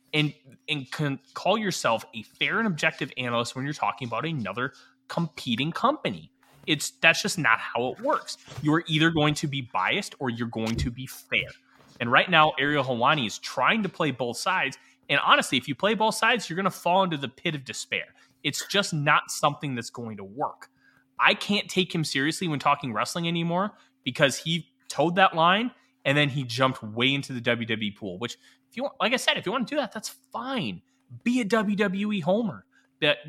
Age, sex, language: 20-39, male, English